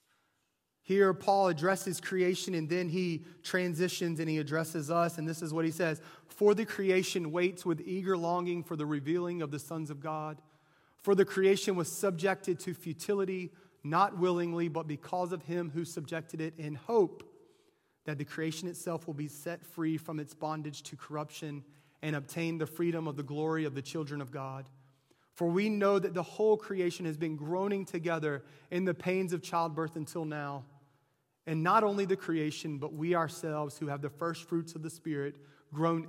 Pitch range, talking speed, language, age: 145-175 Hz, 185 wpm, English, 30-49